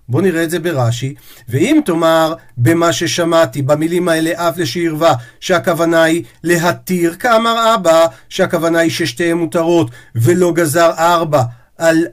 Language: Hebrew